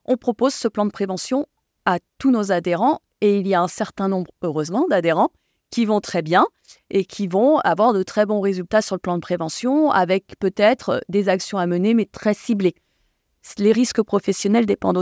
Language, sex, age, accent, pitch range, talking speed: French, female, 30-49, French, 180-225 Hz, 195 wpm